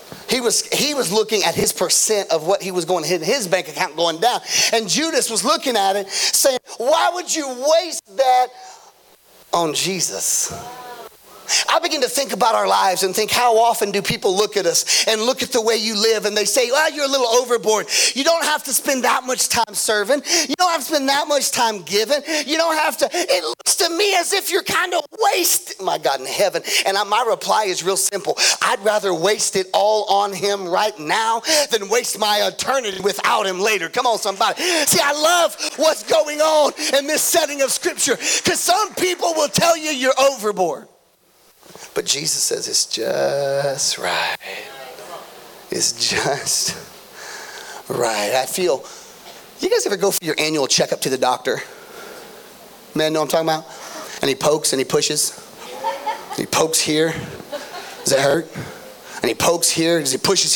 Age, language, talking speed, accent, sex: 40-59, English, 190 wpm, American, male